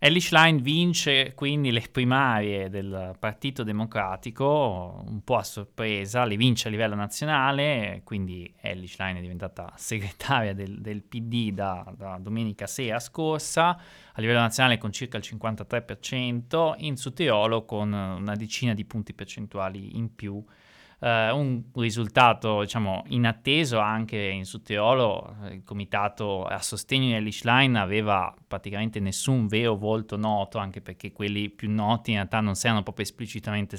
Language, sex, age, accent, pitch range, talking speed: Italian, male, 20-39, native, 100-120 Hz, 145 wpm